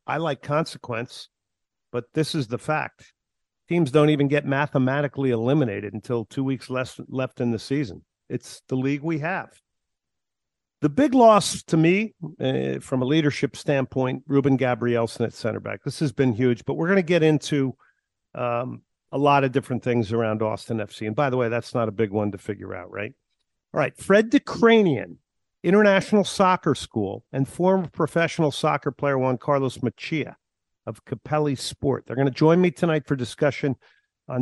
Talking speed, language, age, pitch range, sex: 175 wpm, English, 50-69, 120-155 Hz, male